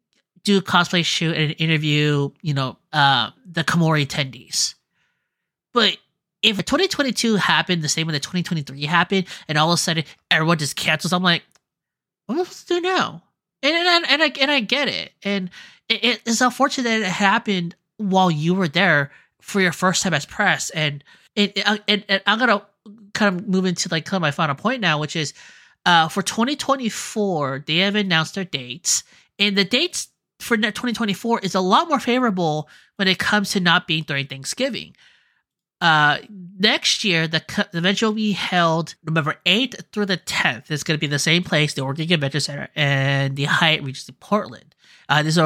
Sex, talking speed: male, 195 wpm